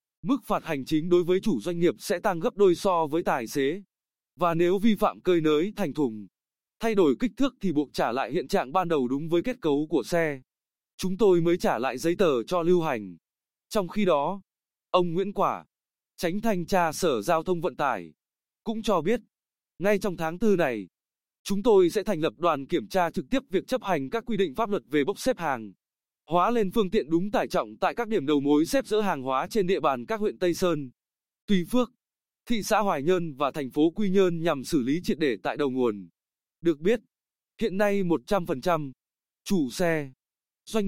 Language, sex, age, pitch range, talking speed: Vietnamese, male, 20-39, 155-205 Hz, 215 wpm